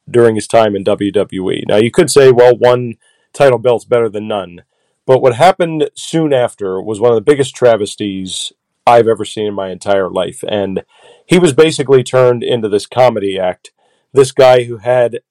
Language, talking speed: English, 185 wpm